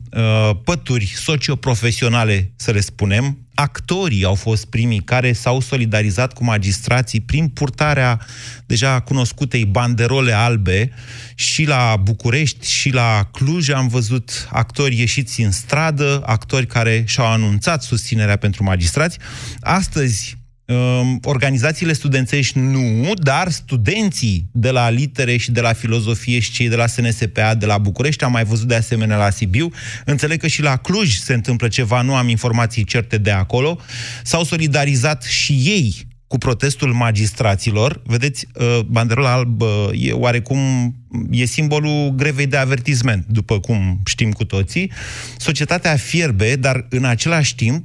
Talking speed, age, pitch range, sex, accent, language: 135 wpm, 30-49, 115-135 Hz, male, native, Romanian